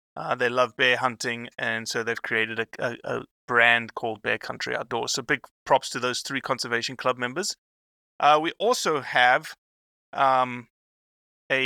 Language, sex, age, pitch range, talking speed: English, male, 30-49, 115-140 Hz, 165 wpm